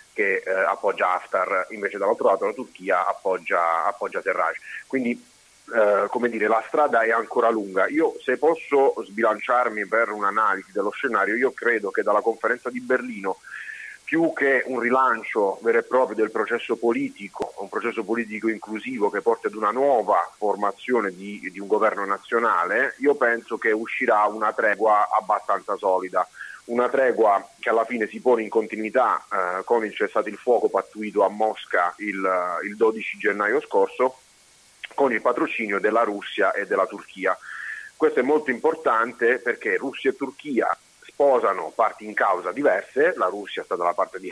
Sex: male